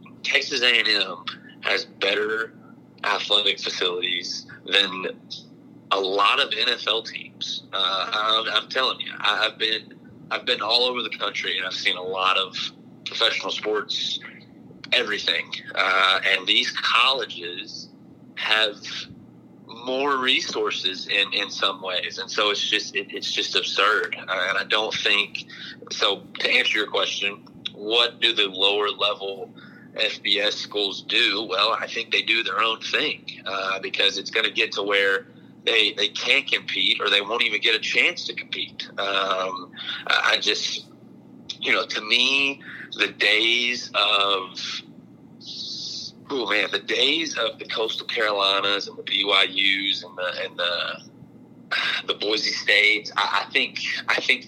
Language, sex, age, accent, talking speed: English, male, 30-49, American, 150 wpm